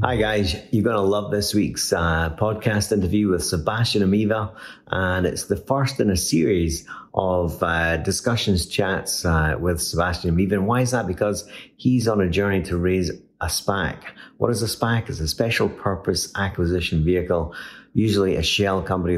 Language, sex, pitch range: English, male, 85-105 Hz